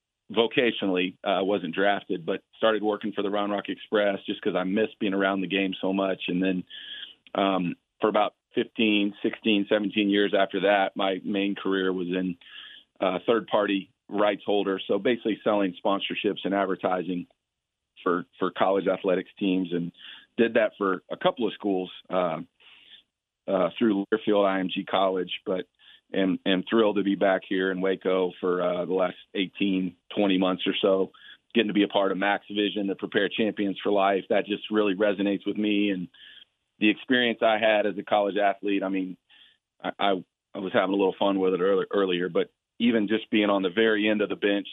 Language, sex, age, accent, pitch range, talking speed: English, male, 40-59, American, 95-105 Hz, 185 wpm